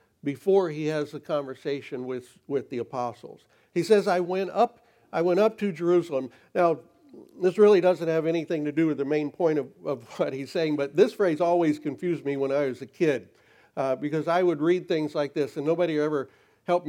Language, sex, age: English, male, 60-79